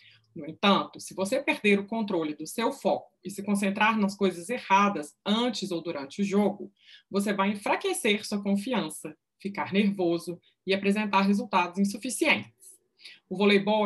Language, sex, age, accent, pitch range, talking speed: Portuguese, female, 20-39, Brazilian, 185-225 Hz, 145 wpm